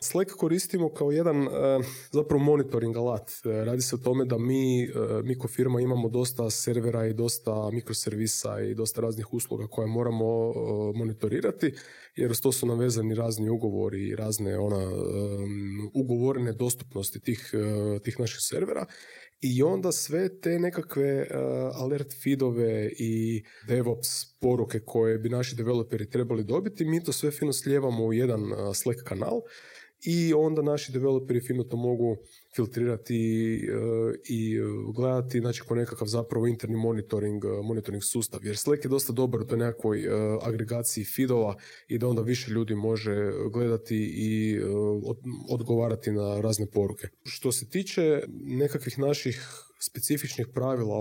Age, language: 20-39, Croatian